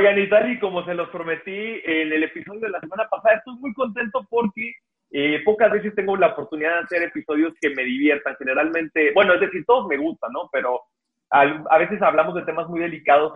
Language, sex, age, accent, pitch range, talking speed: Spanish, male, 30-49, Mexican, 145-200 Hz, 205 wpm